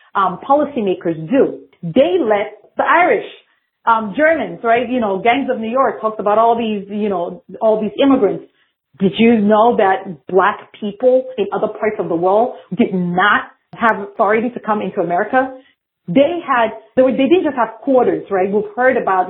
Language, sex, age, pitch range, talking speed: English, female, 30-49, 195-260 Hz, 175 wpm